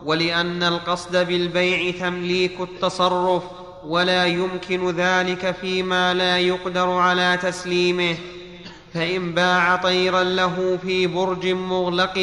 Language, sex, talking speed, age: Arabic, male, 100 wpm, 30-49